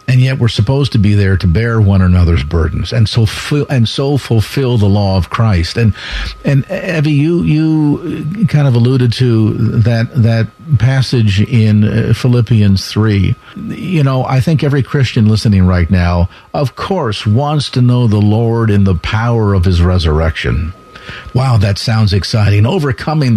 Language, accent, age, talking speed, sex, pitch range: English, American, 50-69, 165 wpm, male, 95-120 Hz